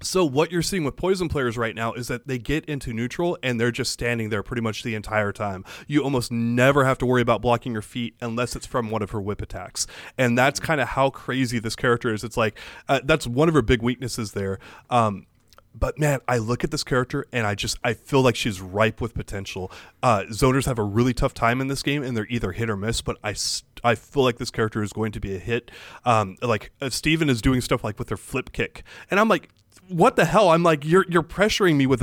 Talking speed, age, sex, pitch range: 255 wpm, 20-39, male, 110-140 Hz